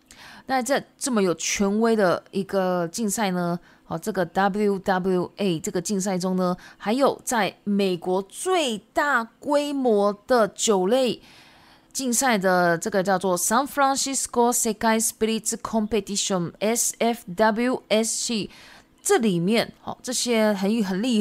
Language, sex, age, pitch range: Japanese, female, 20-39, 195-255 Hz